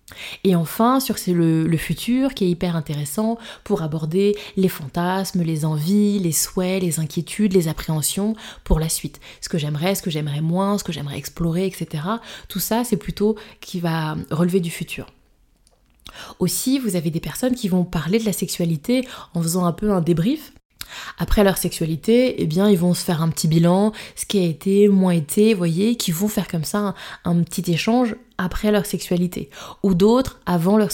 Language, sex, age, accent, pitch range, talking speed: French, female, 20-39, French, 170-210 Hz, 190 wpm